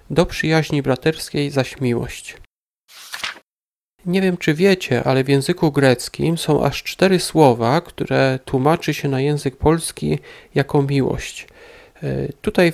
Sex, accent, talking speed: male, native, 125 wpm